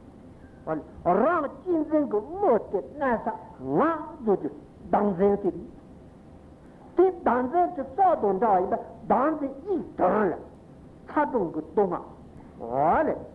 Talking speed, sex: 95 wpm, male